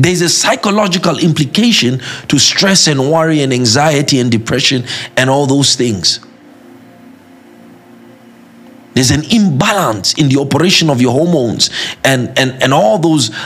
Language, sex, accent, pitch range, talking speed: English, male, South African, 115-155 Hz, 135 wpm